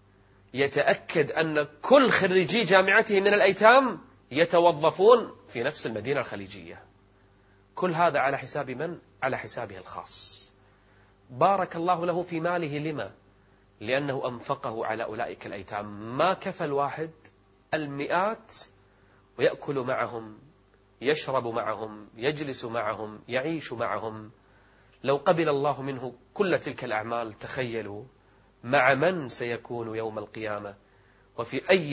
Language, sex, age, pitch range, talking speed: Arabic, male, 30-49, 100-140 Hz, 110 wpm